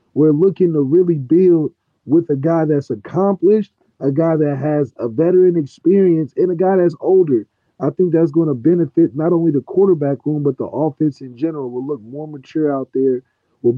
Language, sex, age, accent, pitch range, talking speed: English, male, 30-49, American, 140-165 Hz, 195 wpm